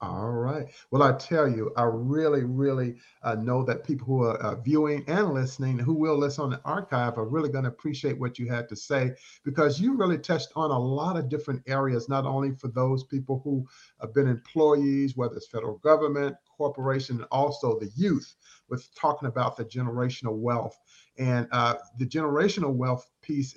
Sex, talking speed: male, 190 wpm